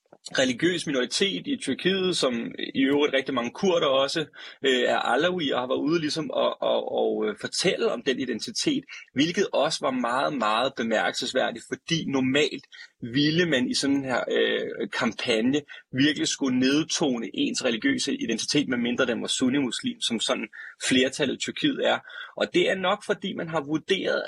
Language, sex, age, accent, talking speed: Danish, male, 30-49, native, 160 wpm